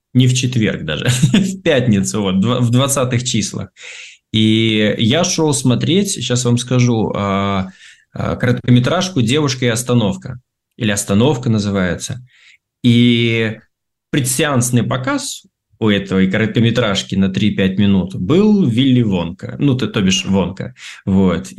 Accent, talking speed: native, 115 wpm